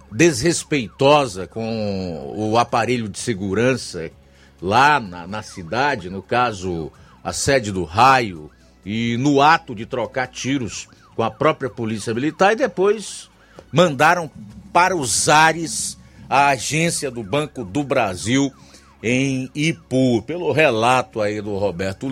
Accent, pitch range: Brazilian, 105-140 Hz